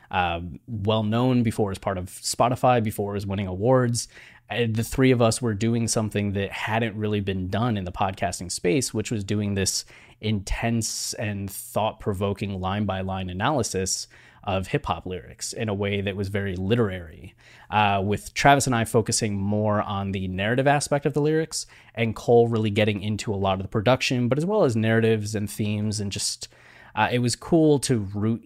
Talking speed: 180 wpm